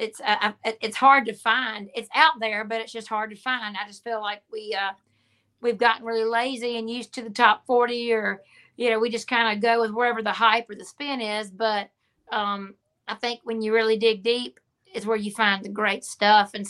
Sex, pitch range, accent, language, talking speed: female, 195-230 Hz, American, English, 230 wpm